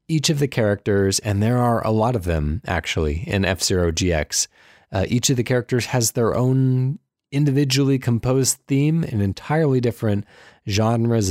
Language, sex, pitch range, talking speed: English, male, 100-135 Hz, 160 wpm